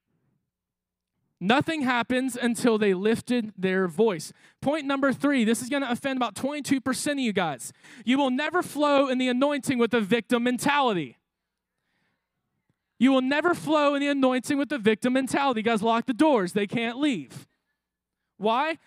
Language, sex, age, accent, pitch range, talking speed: English, male, 20-39, American, 205-275 Hz, 160 wpm